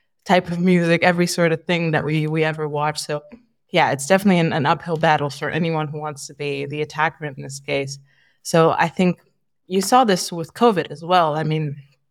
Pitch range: 160-180 Hz